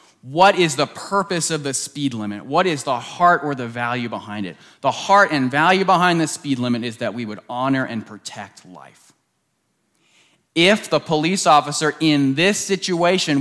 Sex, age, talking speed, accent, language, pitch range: male, 30-49, 180 wpm, American, English, 130-170 Hz